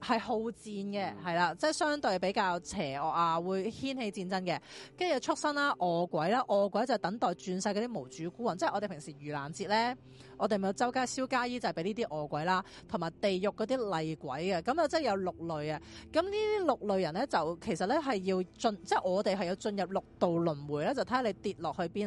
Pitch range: 175-245 Hz